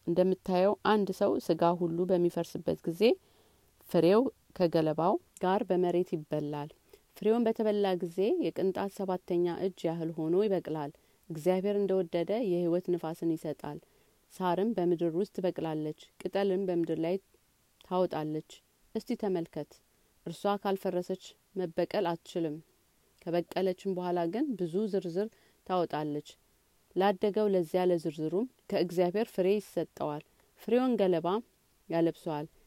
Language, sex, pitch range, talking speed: Amharic, female, 165-195 Hz, 100 wpm